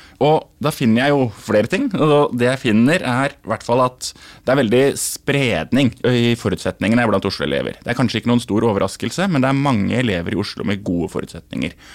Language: English